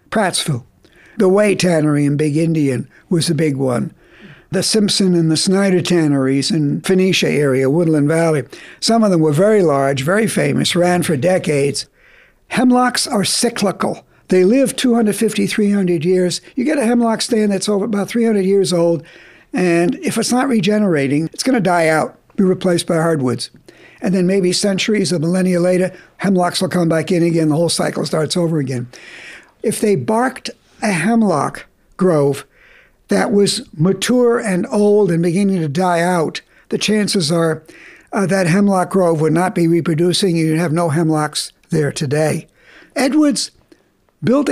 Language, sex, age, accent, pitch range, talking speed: English, male, 60-79, American, 170-215 Hz, 160 wpm